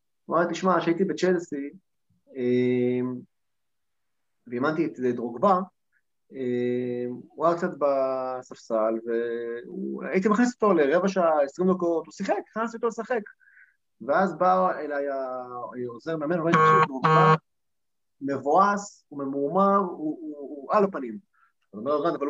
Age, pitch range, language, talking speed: 30-49, 140-200 Hz, Hebrew, 100 wpm